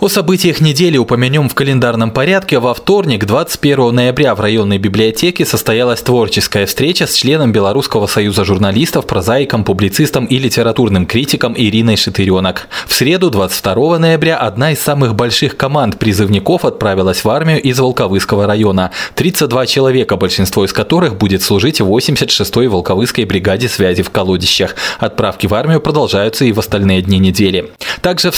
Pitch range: 100-135 Hz